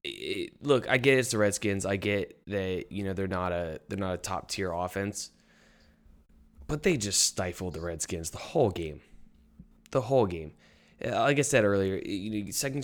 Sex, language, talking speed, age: male, English, 180 wpm, 20-39